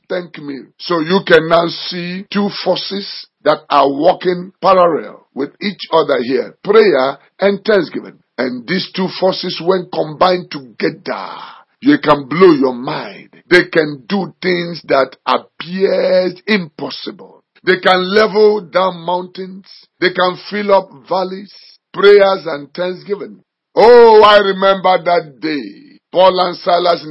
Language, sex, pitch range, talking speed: English, male, 165-195 Hz, 135 wpm